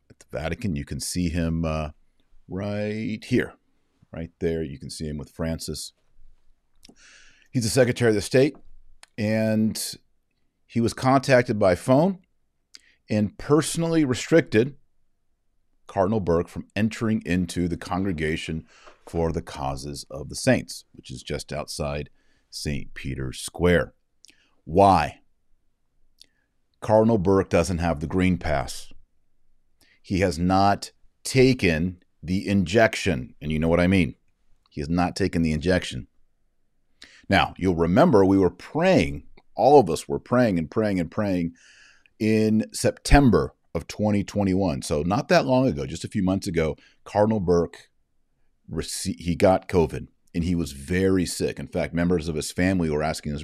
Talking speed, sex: 140 wpm, male